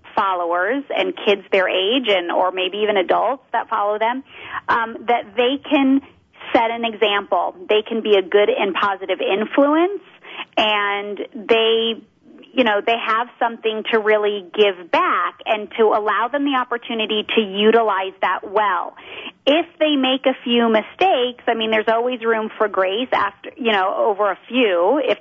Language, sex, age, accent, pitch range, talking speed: English, female, 30-49, American, 200-245 Hz, 165 wpm